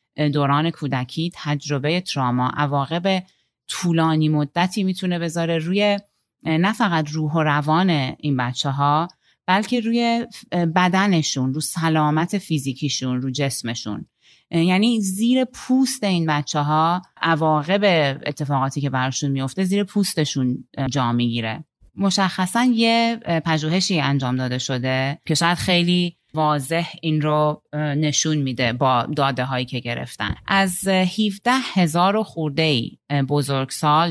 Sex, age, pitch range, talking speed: female, 30-49, 140-180 Hz, 115 wpm